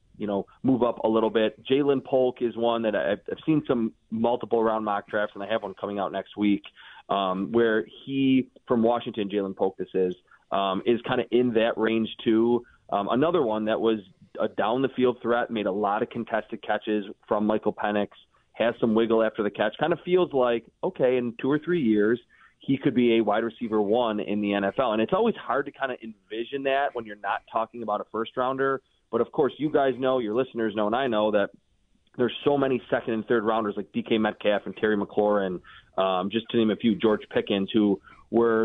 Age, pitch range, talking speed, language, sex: 20-39, 105-125 Hz, 215 wpm, English, male